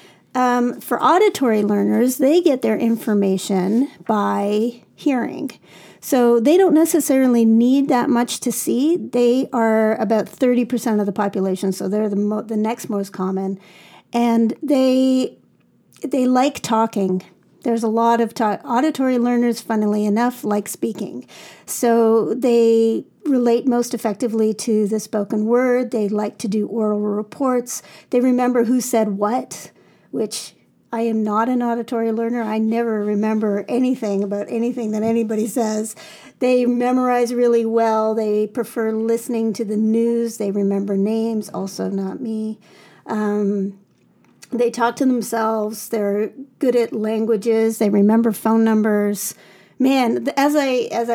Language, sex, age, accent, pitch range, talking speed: English, female, 50-69, American, 215-245 Hz, 140 wpm